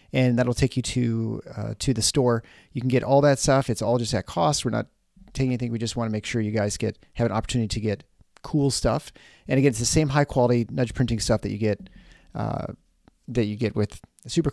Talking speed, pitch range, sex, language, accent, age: 245 wpm, 110-140 Hz, male, English, American, 30-49